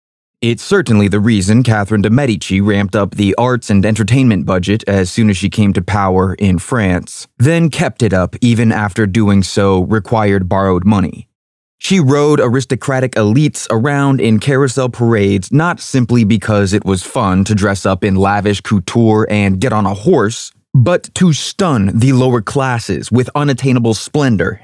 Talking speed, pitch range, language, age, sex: 165 wpm, 100-130 Hz, English, 20-39, male